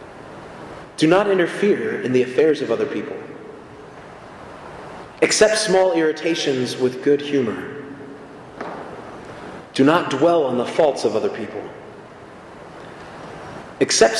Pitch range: 135-185 Hz